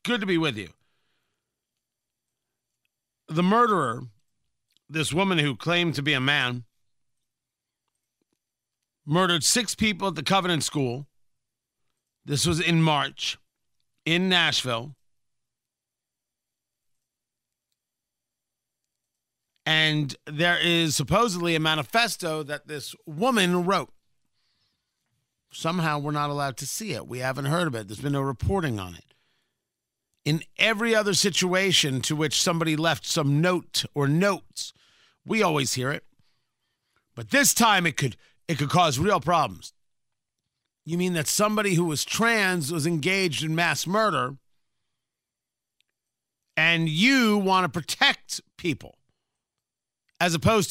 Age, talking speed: 50-69, 120 wpm